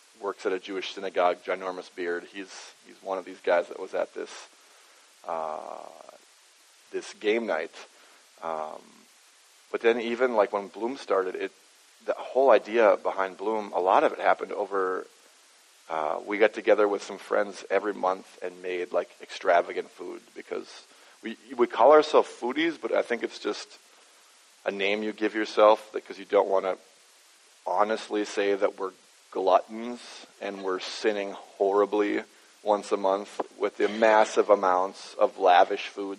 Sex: male